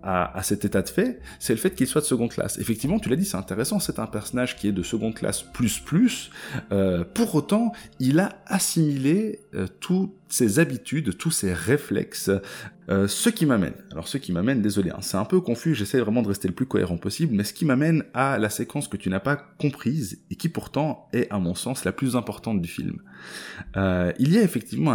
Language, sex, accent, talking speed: French, male, French, 220 wpm